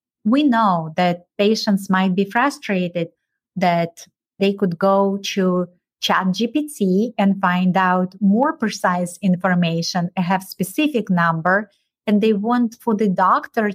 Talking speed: 125 wpm